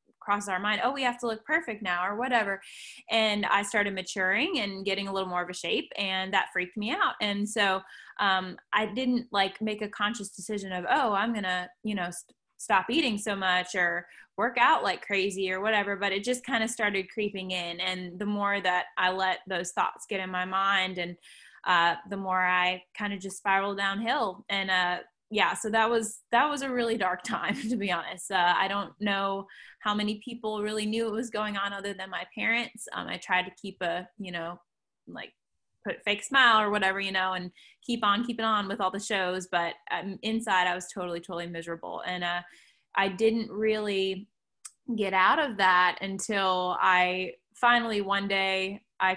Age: 10-29